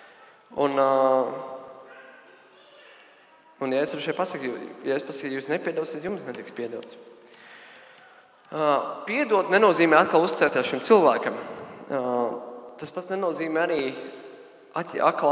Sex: male